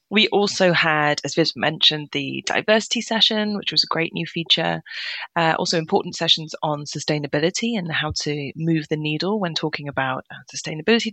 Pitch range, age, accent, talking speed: 155-205 Hz, 20-39, British, 165 wpm